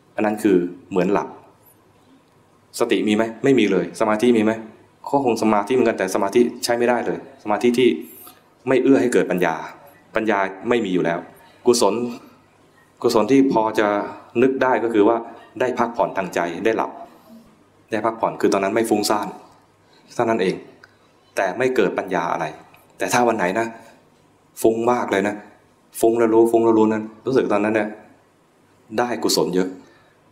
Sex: male